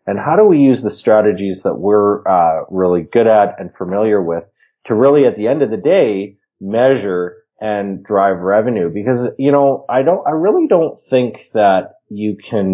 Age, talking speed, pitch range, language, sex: 30-49, 190 wpm, 95-120 Hz, English, male